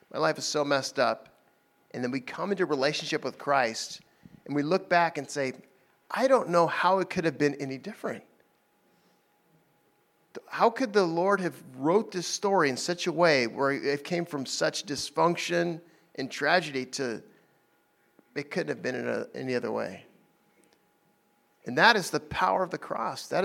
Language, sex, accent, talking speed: English, male, American, 175 wpm